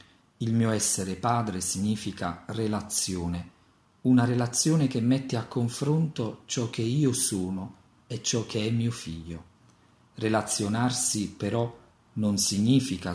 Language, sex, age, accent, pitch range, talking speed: Italian, male, 40-59, native, 95-120 Hz, 120 wpm